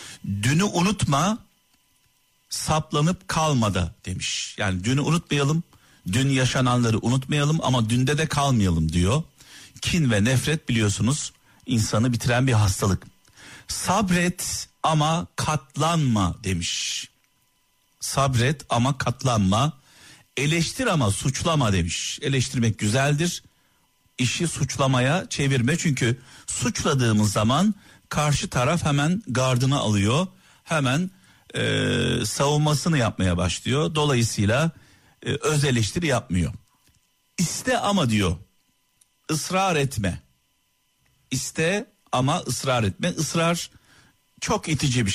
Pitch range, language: 110-155 Hz, Turkish